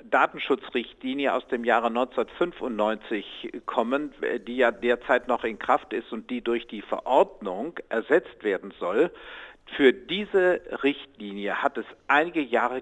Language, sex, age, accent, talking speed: German, male, 50-69, German, 130 wpm